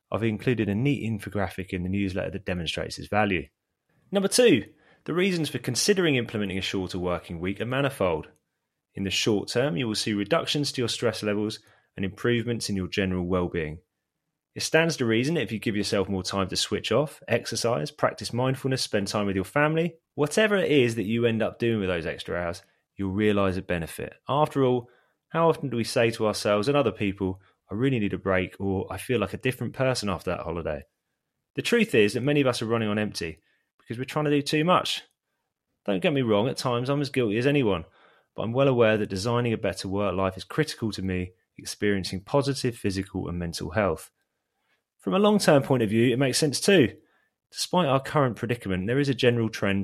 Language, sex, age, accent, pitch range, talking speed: English, male, 20-39, British, 95-135 Hz, 210 wpm